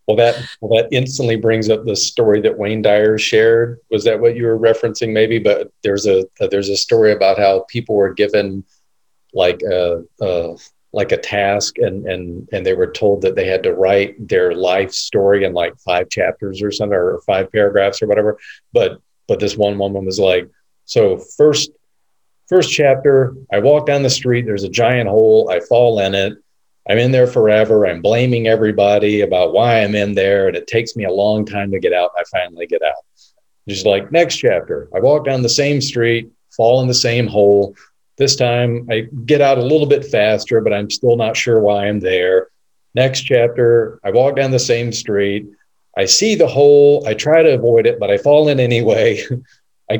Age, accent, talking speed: 40-59, American, 200 wpm